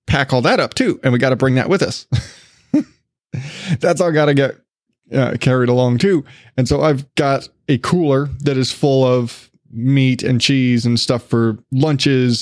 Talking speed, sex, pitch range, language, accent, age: 190 wpm, male, 120-140 Hz, English, American, 20-39